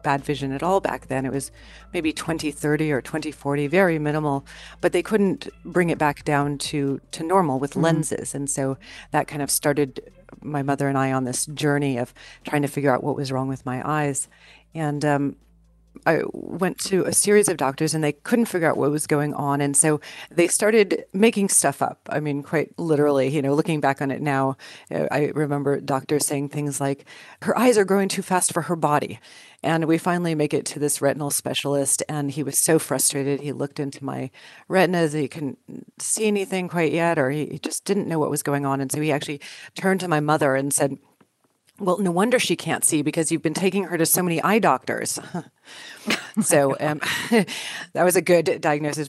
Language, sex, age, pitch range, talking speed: English, female, 40-59, 140-165 Hz, 210 wpm